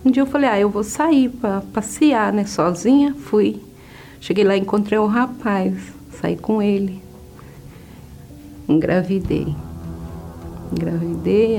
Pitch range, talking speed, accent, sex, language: 170-235 Hz, 125 wpm, Brazilian, female, Portuguese